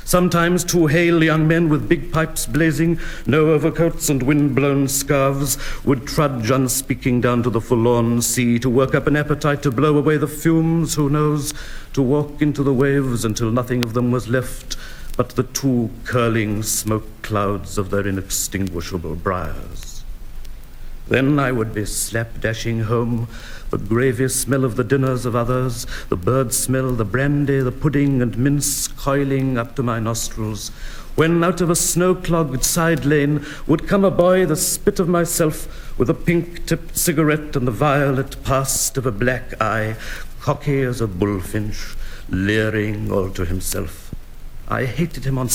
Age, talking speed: 60-79, 160 wpm